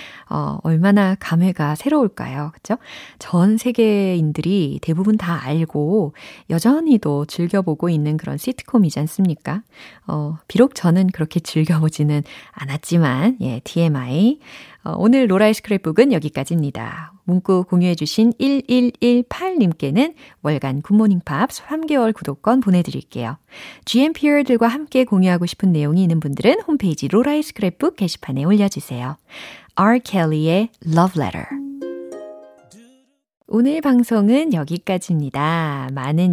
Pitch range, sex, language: 155-245 Hz, female, Korean